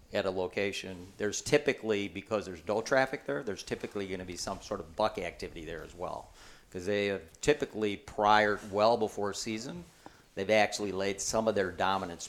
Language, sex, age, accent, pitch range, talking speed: English, male, 50-69, American, 90-105 Hz, 185 wpm